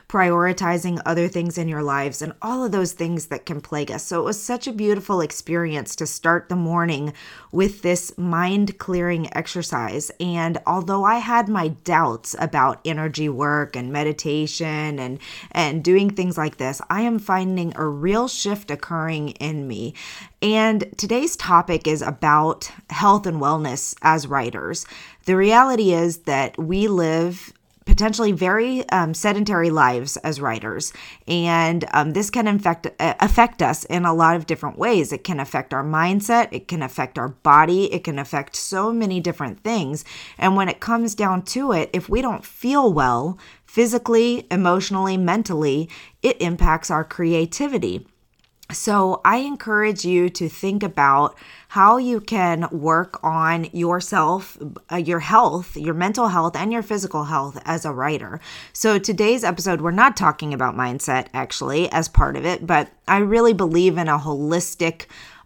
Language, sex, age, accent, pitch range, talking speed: English, female, 20-39, American, 155-200 Hz, 160 wpm